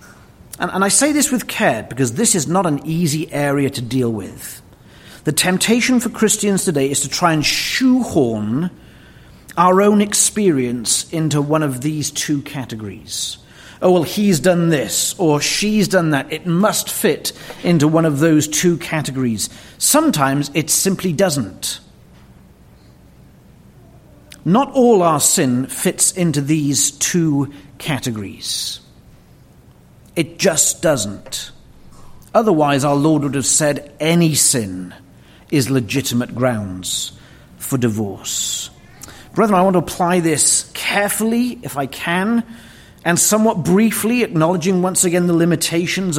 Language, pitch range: English, 135-185 Hz